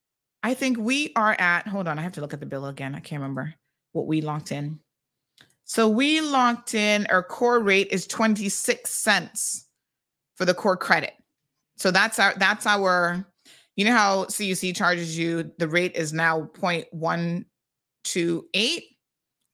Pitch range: 170-225 Hz